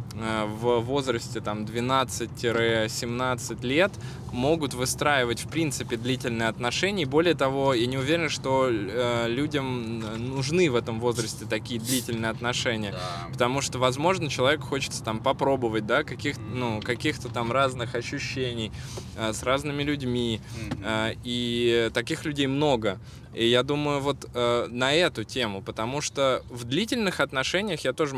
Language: Russian